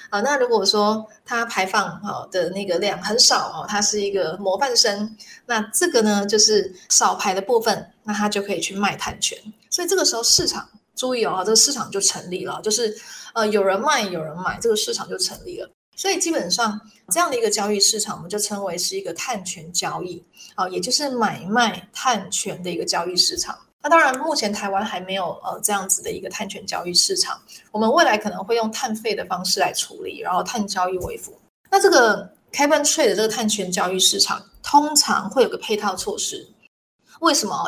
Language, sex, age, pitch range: Chinese, female, 20-39, 195-260 Hz